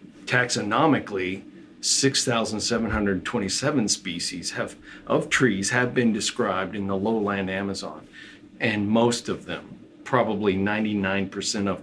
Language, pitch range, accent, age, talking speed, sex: English, 95-120 Hz, American, 50-69, 95 wpm, male